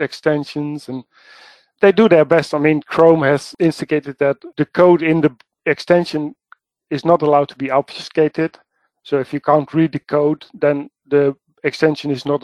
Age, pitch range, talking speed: 40-59, 140-160 Hz, 170 wpm